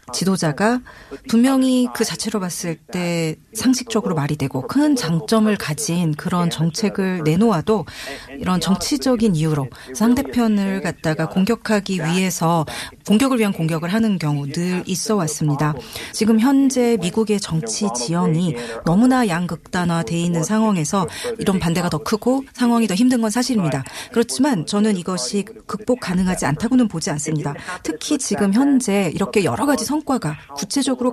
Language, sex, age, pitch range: Korean, female, 30-49, 165-235 Hz